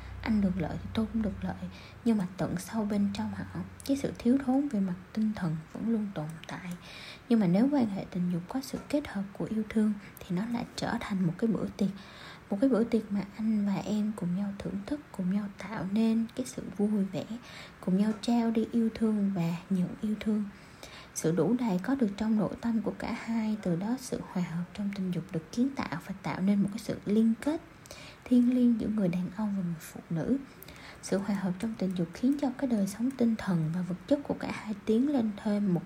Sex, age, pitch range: female, 20-39, 190-235 Hz